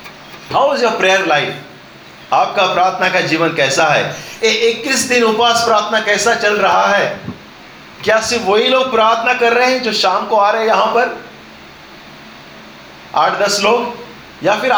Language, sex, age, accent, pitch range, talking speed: Hindi, male, 40-59, native, 150-220 Hz, 160 wpm